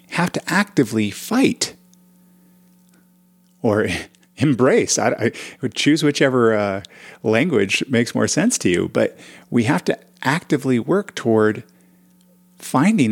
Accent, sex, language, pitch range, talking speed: American, male, English, 110-180 Hz, 120 wpm